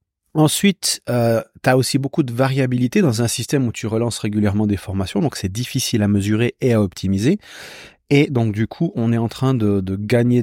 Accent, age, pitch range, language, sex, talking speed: French, 30-49, 105-130 Hz, French, male, 205 wpm